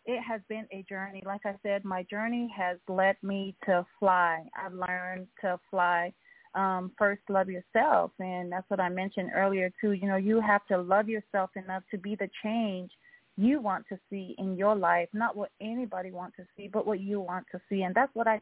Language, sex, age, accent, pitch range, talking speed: English, female, 30-49, American, 185-215 Hz, 210 wpm